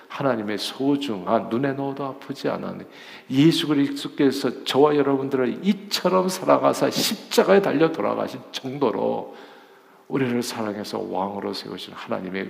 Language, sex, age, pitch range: Korean, male, 50-69, 125-170 Hz